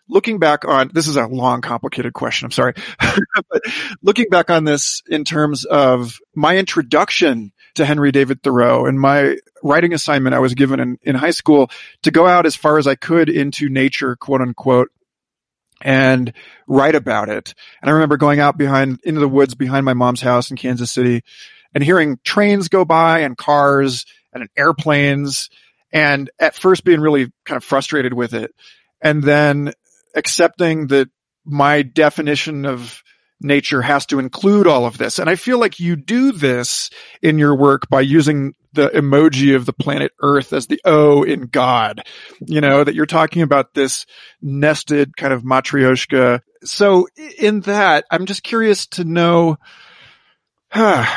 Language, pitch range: English, 135-170 Hz